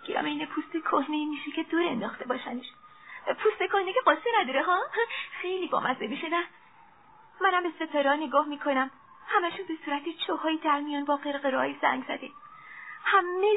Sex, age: female, 20-39